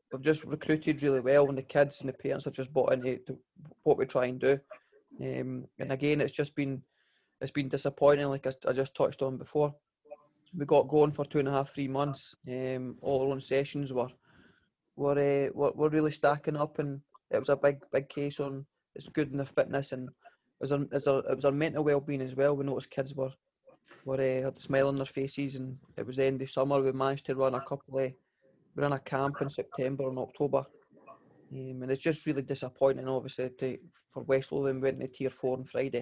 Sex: male